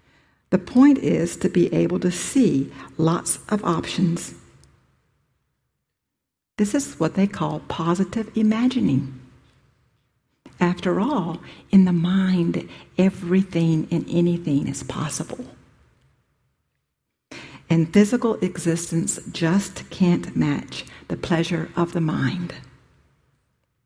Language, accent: English, American